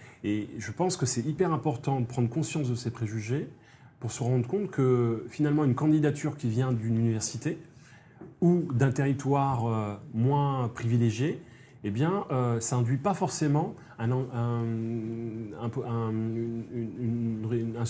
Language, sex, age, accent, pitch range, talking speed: French, male, 30-49, French, 115-145 Hz, 125 wpm